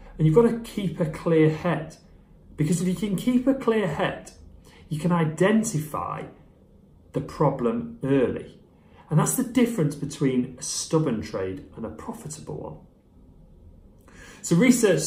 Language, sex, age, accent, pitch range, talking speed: English, male, 30-49, British, 95-155 Hz, 145 wpm